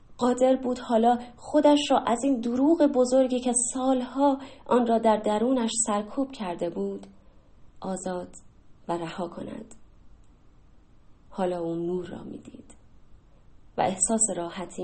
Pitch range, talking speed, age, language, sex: 175-255 Hz, 125 wpm, 20-39, Persian, female